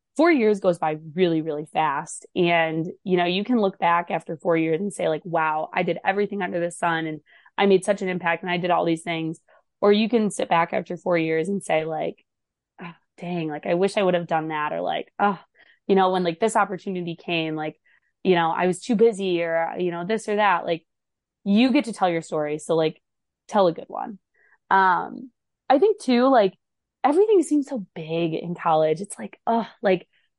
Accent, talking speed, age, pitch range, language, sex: American, 220 wpm, 20-39, 170-225 Hz, English, female